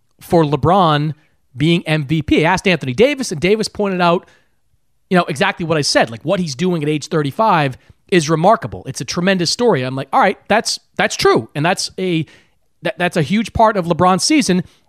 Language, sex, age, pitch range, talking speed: English, male, 30-49, 125-175 Hz, 200 wpm